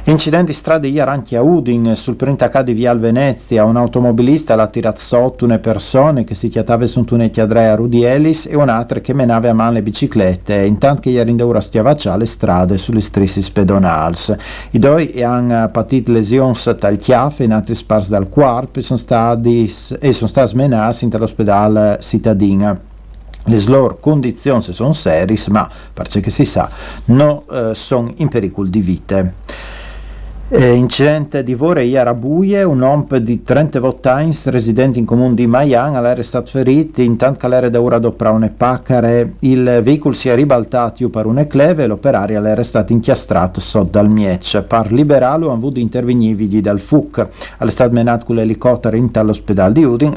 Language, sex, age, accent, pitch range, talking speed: Italian, male, 50-69, native, 110-130 Hz, 155 wpm